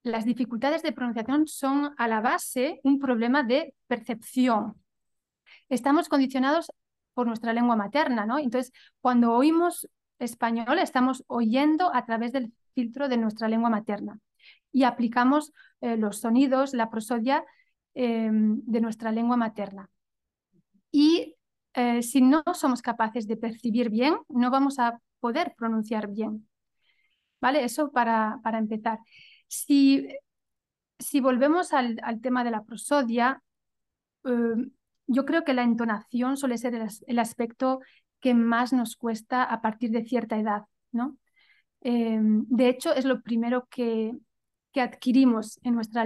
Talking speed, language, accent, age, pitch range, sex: 135 wpm, Spanish, Spanish, 30-49, 230-270 Hz, female